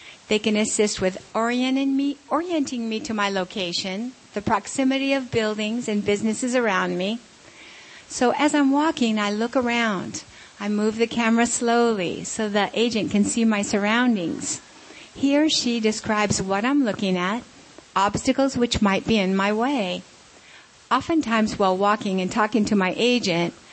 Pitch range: 205-265 Hz